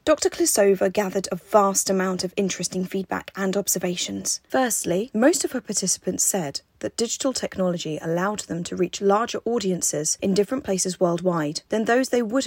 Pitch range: 185-240 Hz